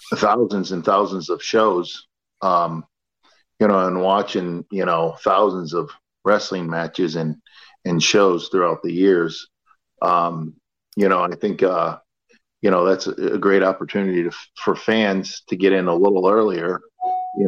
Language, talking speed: English, 160 wpm